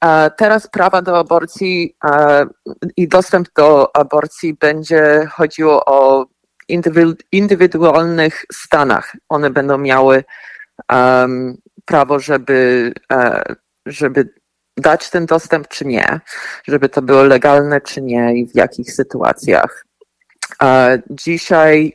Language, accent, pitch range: Polish, native, 130-165 Hz